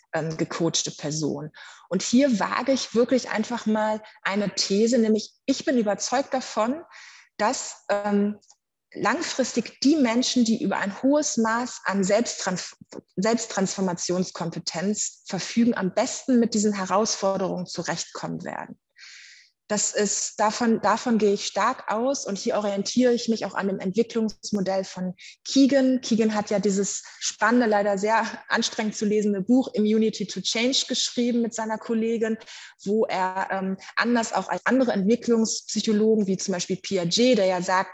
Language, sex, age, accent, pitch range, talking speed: German, female, 30-49, German, 190-235 Hz, 140 wpm